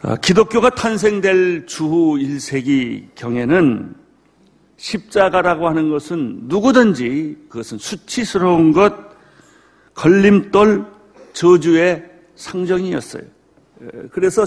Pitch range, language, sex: 170-235 Hz, Korean, male